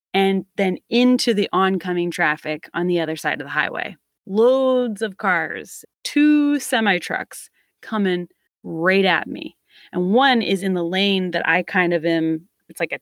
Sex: female